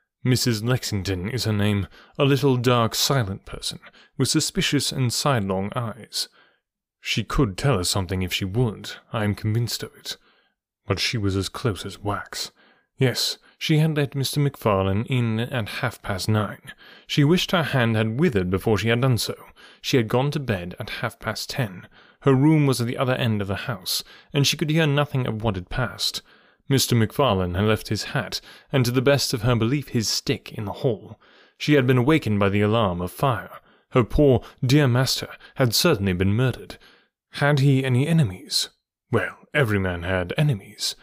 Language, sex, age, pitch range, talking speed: English, male, 30-49, 105-140 Hz, 185 wpm